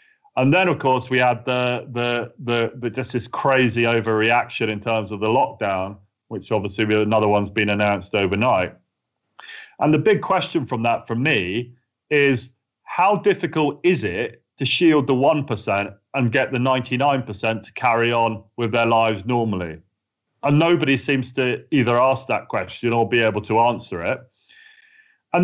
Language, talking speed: English, 165 wpm